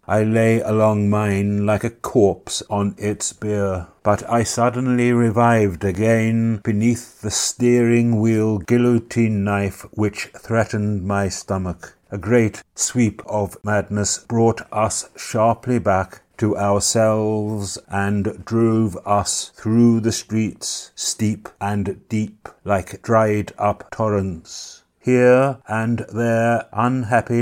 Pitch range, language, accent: 100-115 Hz, English, British